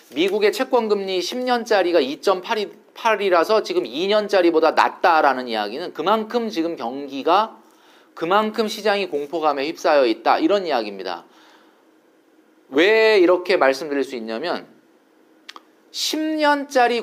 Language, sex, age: Korean, male, 40-59